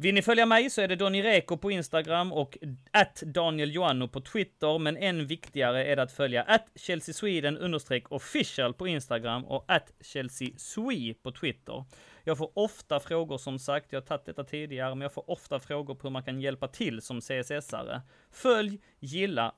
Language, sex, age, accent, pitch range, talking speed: Swedish, male, 30-49, native, 120-160 Hz, 185 wpm